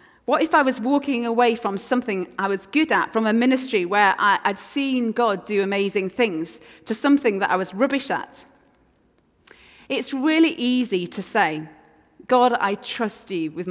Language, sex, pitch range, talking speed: English, female, 190-255 Hz, 170 wpm